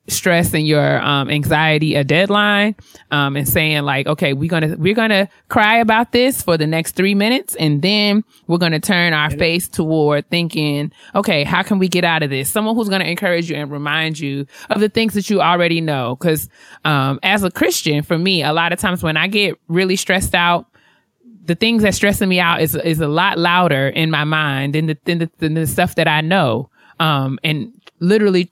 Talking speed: 225 wpm